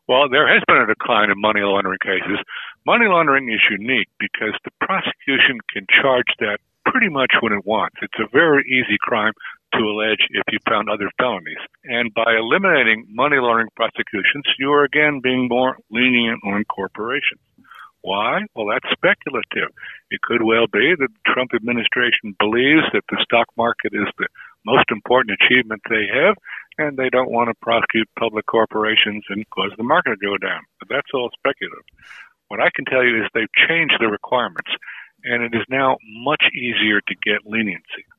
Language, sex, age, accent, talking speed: English, male, 60-79, American, 180 wpm